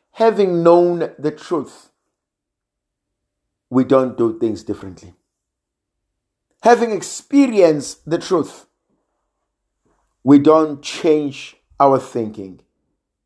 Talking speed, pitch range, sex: 80 wpm, 115-165 Hz, male